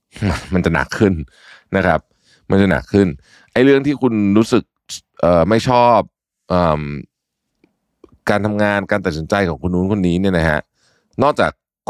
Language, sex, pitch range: Thai, male, 80-105 Hz